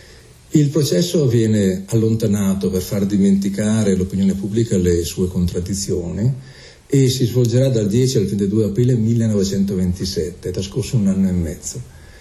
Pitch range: 95-120 Hz